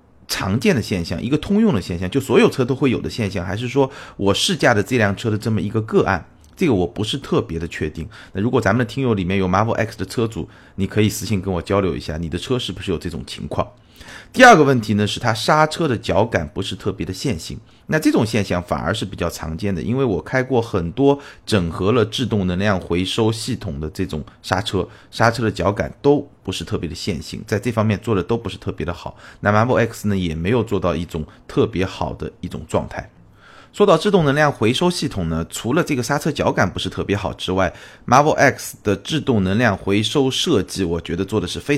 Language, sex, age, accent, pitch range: Chinese, male, 30-49, native, 95-125 Hz